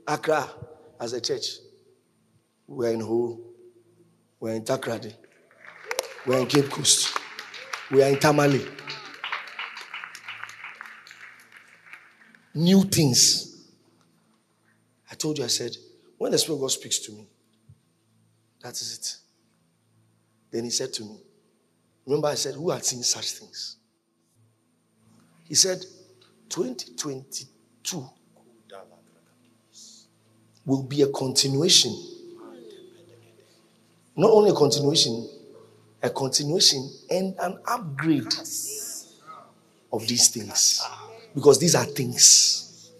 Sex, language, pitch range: male, English, 115-185 Hz